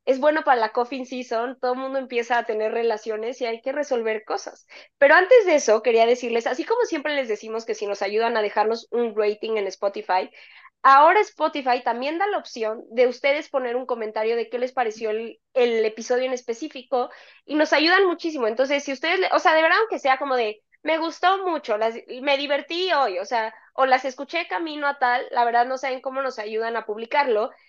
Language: Spanish